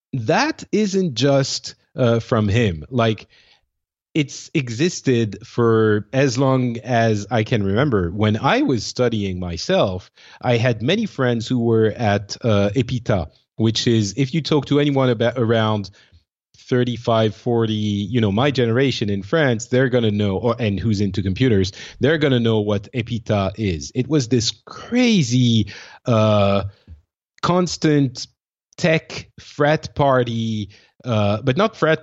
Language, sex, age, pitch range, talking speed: English, male, 30-49, 105-135 Hz, 140 wpm